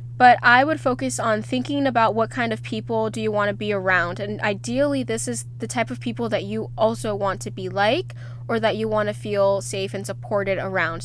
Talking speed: 230 wpm